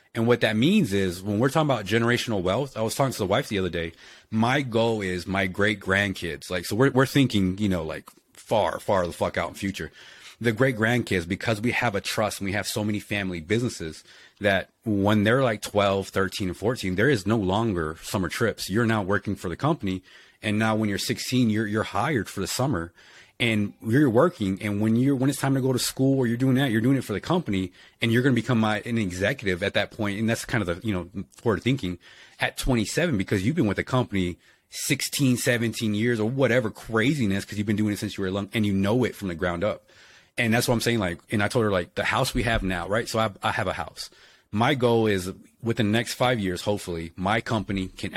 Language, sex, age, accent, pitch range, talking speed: English, male, 30-49, American, 95-120 Hz, 245 wpm